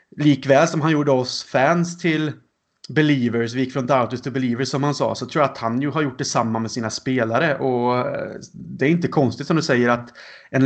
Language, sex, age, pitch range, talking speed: Swedish, male, 30-49, 120-145 Hz, 220 wpm